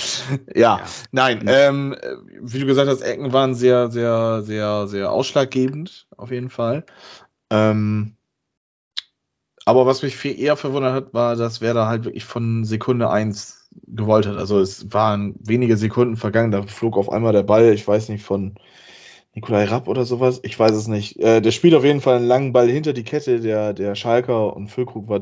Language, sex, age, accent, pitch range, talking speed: German, male, 20-39, German, 105-125 Hz, 185 wpm